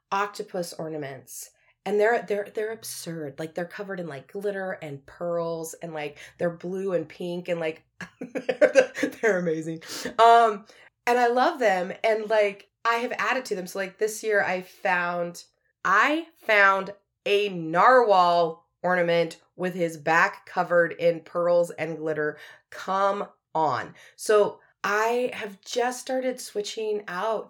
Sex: female